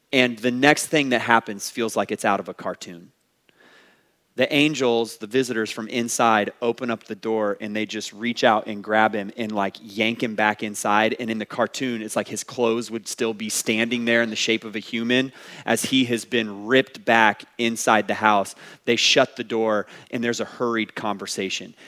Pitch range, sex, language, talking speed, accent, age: 105-125 Hz, male, English, 205 wpm, American, 30-49